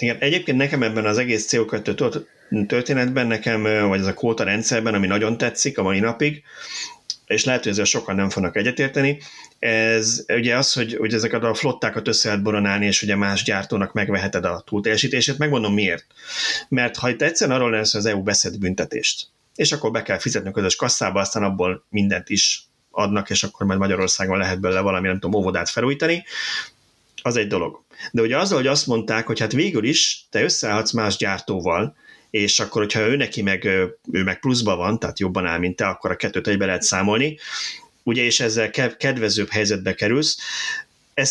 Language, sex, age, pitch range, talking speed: Hungarian, male, 30-49, 100-125 Hz, 185 wpm